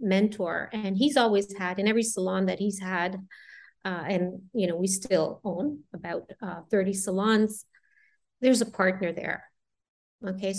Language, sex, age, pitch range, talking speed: English, female, 30-49, 190-225 Hz, 155 wpm